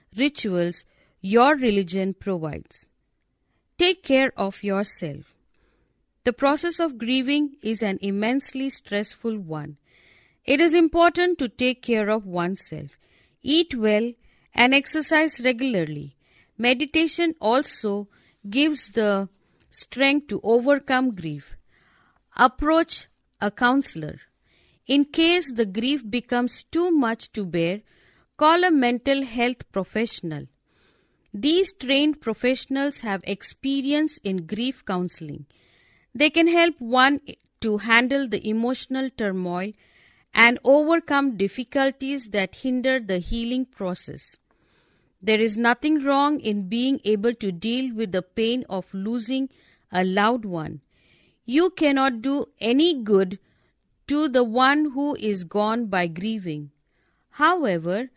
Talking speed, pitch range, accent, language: 115 wpm, 200-275 Hz, Indian, English